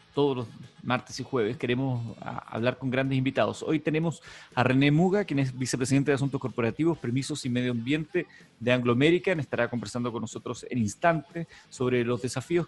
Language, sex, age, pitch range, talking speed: Spanish, male, 30-49, 120-150 Hz, 175 wpm